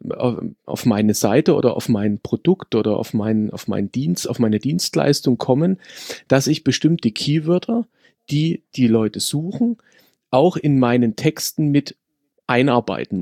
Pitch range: 115-155 Hz